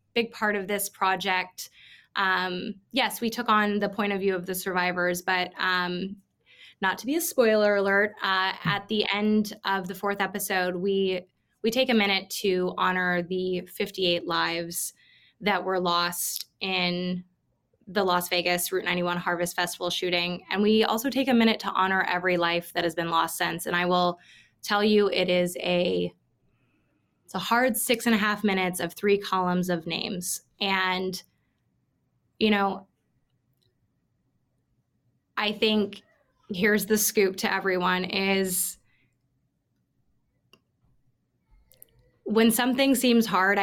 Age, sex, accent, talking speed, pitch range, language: 20-39, female, American, 145 wpm, 180-210 Hz, English